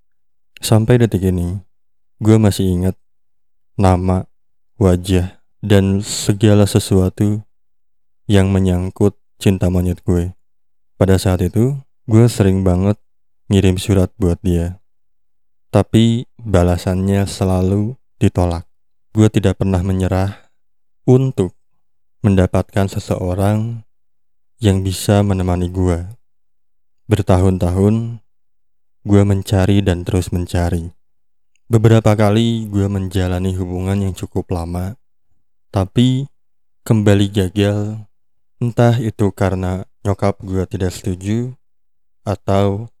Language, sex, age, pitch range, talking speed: Indonesian, male, 20-39, 90-105 Hz, 90 wpm